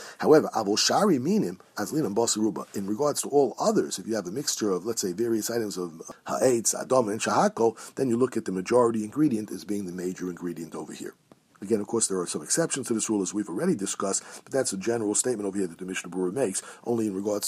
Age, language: 50-69, English